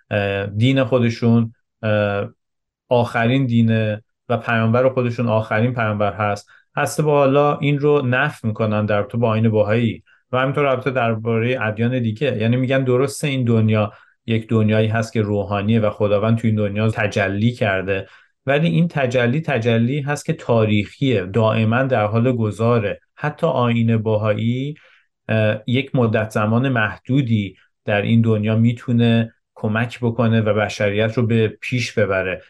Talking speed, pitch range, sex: 135 wpm, 110-130 Hz, male